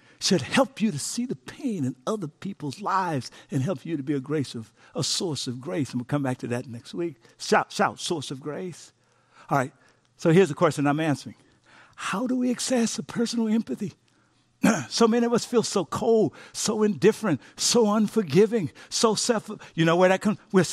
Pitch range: 130-215 Hz